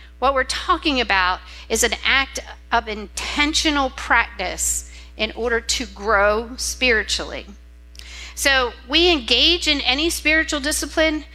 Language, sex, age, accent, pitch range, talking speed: English, female, 50-69, American, 190-280 Hz, 115 wpm